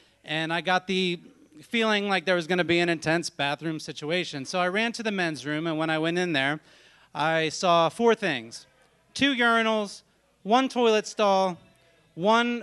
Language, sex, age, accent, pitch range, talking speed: English, male, 30-49, American, 175-225 Hz, 180 wpm